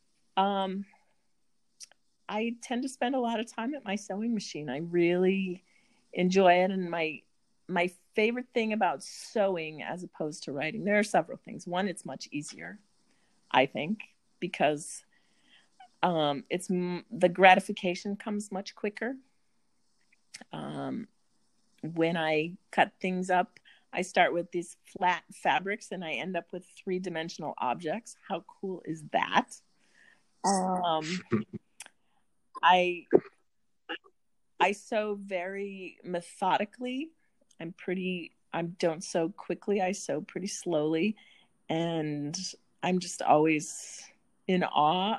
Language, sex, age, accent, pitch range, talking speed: English, female, 40-59, American, 170-210 Hz, 120 wpm